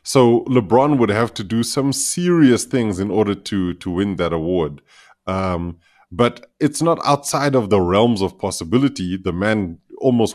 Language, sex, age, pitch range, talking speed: English, male, 30-49, 90-115 Hz, 170 wpm